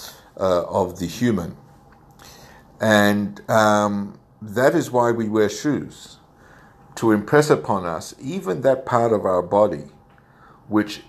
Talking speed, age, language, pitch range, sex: 125 wpm, 60-79, English, 95-120 Hz, male